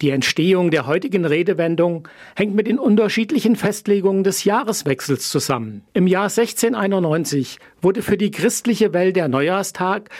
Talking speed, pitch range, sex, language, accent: 135 wpm, 155-210 Hz, male, German, German